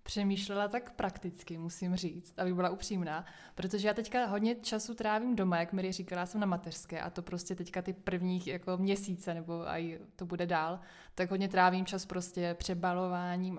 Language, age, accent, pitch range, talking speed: Czech, 20-39, native, 175-200 Hz, 175 wpm